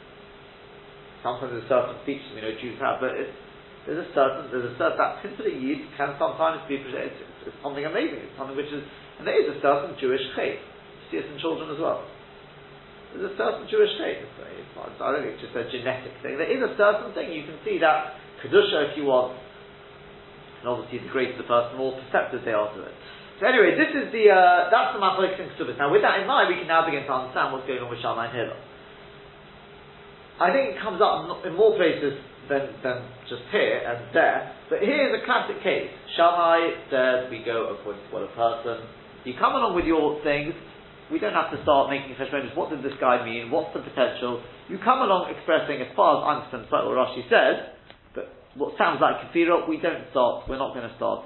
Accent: British